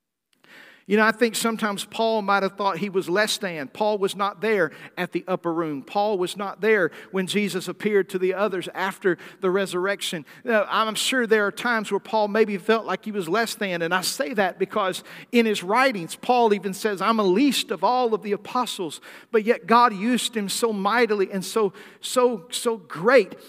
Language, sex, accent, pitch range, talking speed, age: English, male, American, 195-240 Hz, 205 wpm, 50-69